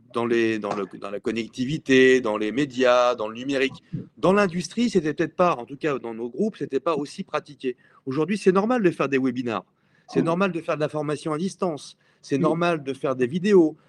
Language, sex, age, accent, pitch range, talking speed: French, male, 40-59, French, 140-195 Hz, 215 wpm